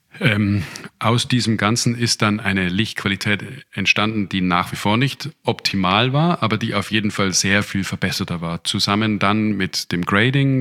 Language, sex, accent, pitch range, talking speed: German, male, German, 95-110 Hz, 170 wpm